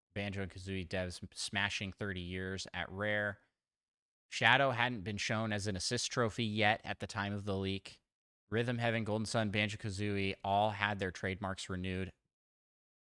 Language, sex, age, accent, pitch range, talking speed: English, male, 20-39, American, 90-105 Hz, 155 wpm